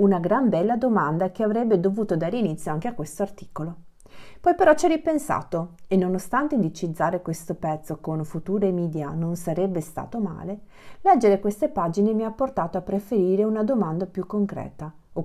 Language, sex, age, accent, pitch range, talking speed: Italian, female, 40-59, native, 165-215 Hz, 170 wpm